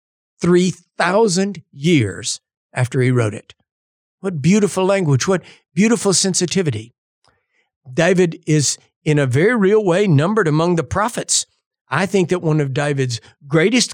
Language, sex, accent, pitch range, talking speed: English, male, American, 135-180 Hz, 130 wpm